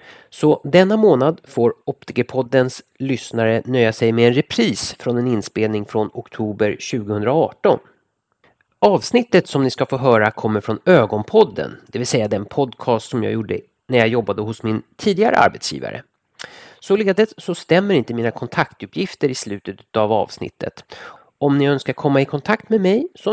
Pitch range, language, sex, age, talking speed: 110-160 Hz, Swedish, male, 30-49, 155 wpm